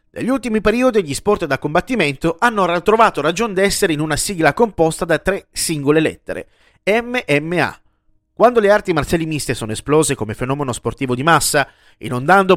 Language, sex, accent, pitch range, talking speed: Italian, male, native, 140-205 Hz, 160 wpm